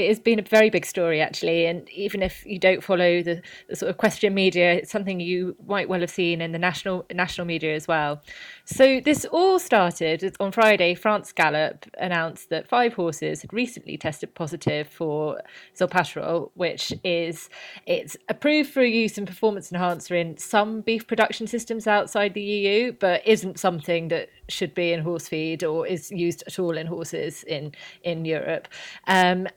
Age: 20-39